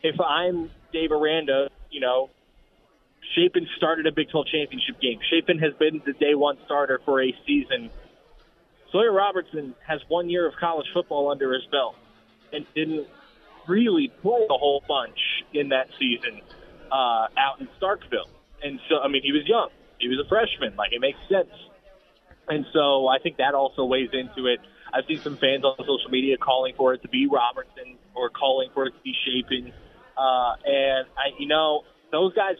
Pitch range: 135-180 Hz